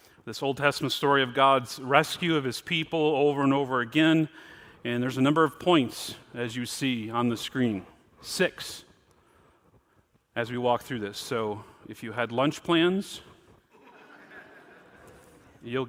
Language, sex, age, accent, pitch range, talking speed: English, male, 40-59, American, 140-175 Hz, 145 wpm